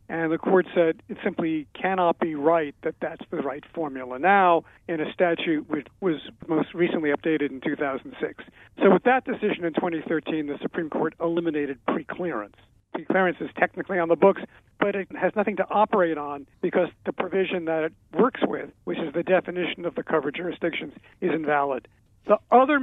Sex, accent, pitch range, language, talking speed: male, American, 155-185 Hz, English, 180 wpm